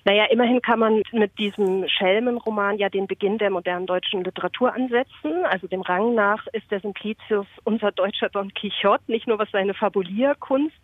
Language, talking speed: German, 170 wpm